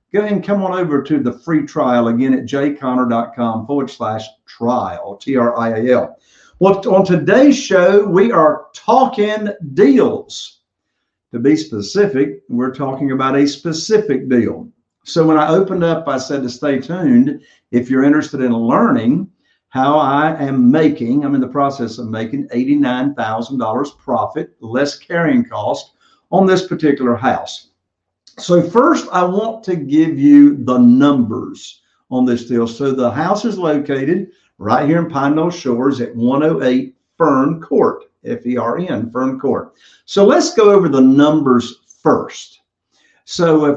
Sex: male